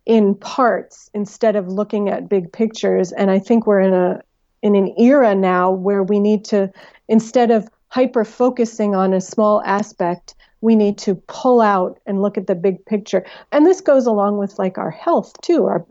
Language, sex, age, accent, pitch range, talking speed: English, female, 40-59, American, 190-230 Hz, 190 wpm